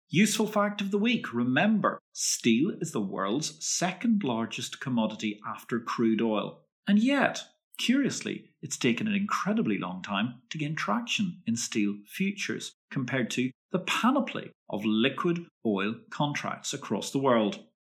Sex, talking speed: male, 140 wpm